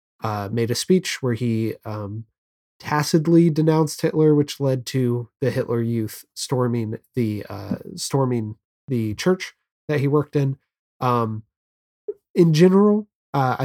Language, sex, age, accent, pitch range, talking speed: English, male, 20-39, American, 115-145 Hz, 130 wpm